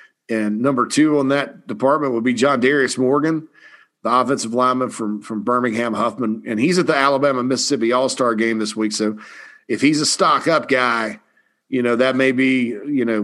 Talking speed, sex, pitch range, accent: 195 wpm, male, 115-145 Hz, American